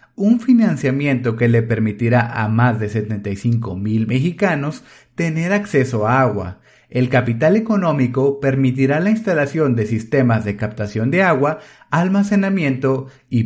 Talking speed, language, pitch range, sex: 130 wpm, Spanish, 115-170 Hz, male